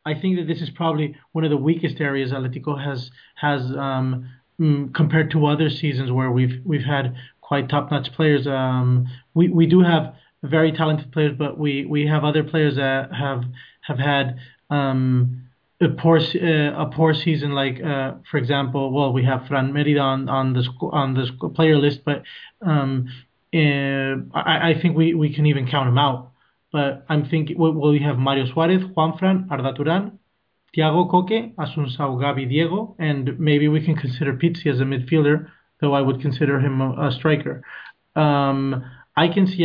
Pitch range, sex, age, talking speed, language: 135-160 Hz, male, 30-49, 185 wpm, English